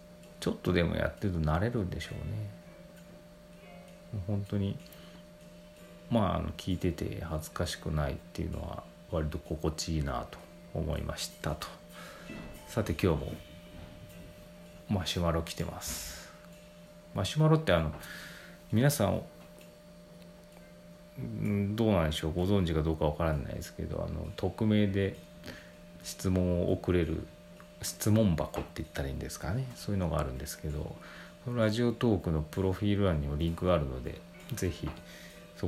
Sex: male